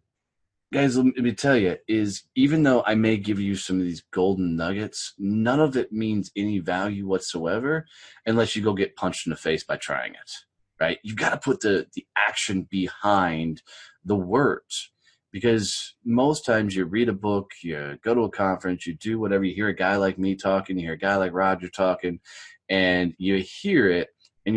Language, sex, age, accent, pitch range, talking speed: English, male, 30-49, American, 95-115 Hz, 195 wpm